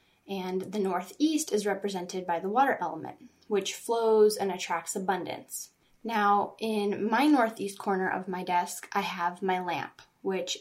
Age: 10-29